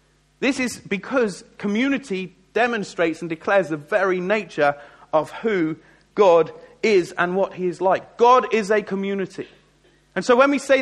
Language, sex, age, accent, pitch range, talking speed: English, male, 40-59, British, 170-215 Hz, 155 wpm